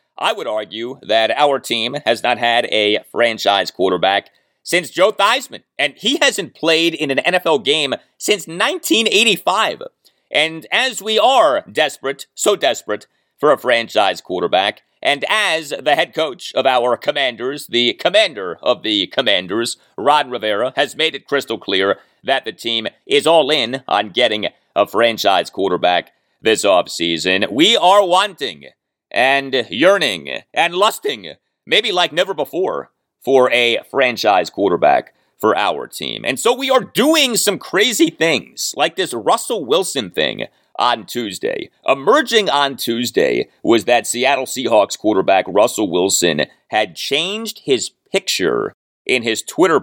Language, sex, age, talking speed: English, male, 30-49, 145 wpm